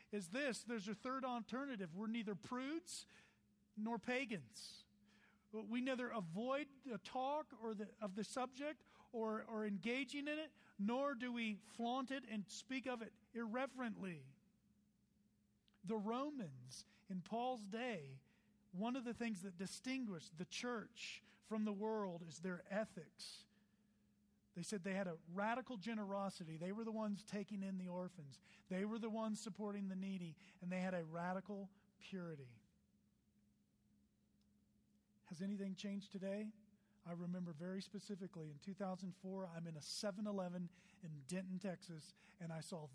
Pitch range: 175-220 Hz